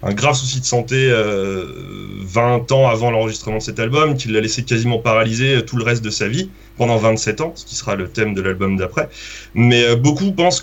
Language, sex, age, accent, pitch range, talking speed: French, male, 30-49, French, 110-135 Hz, 225 wpm